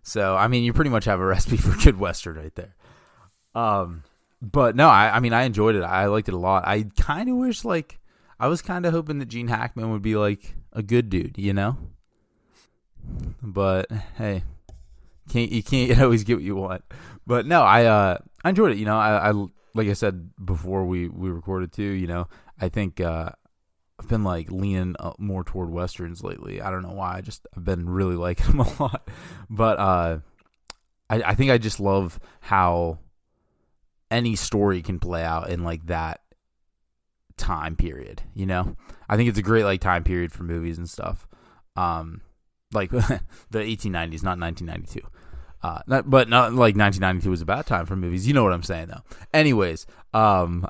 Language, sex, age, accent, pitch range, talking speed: English, male, 20-39, American, 90-110 Hz, 190 wpm